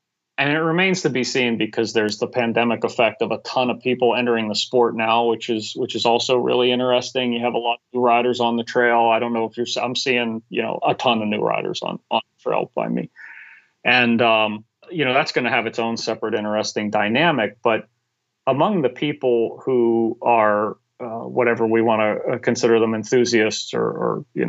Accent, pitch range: American, 110-125 Hz